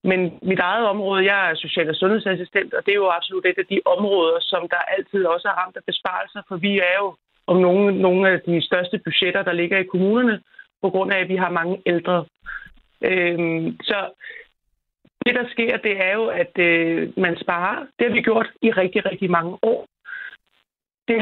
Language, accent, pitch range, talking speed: Danish, native, 180-215 Hz, 190 wpm